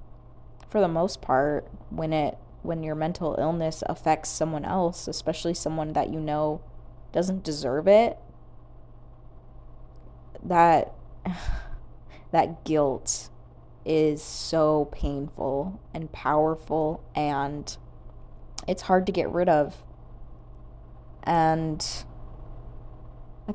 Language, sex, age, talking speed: English, female, 20-39, 95 wpm